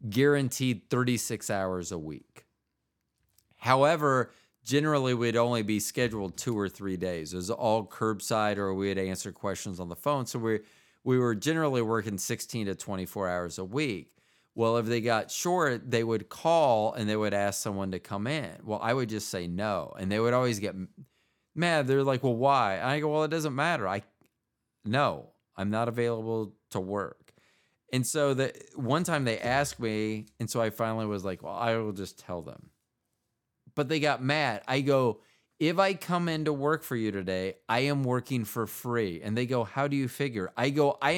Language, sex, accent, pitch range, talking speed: English, male, American, 105-140 Hz, 195 wpm